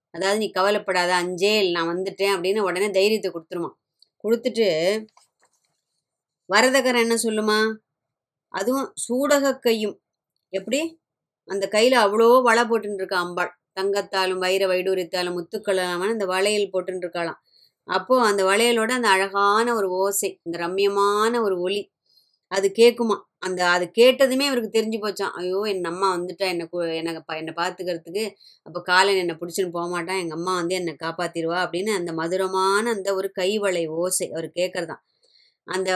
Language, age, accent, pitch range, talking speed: Tamil, 20-39, native, 180-215 Hz, 130 wpm